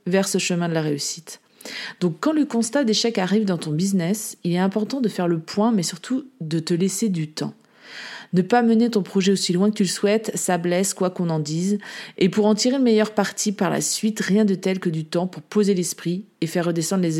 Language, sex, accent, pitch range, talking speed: French, female, French, 175-225 Hz, 240 wpm